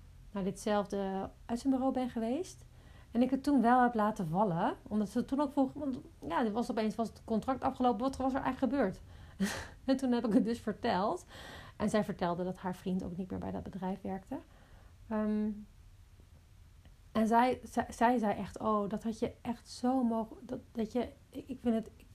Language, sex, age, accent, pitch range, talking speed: Dutch, female, 40-59, Dutch, 185-235 Hz, 205 wpm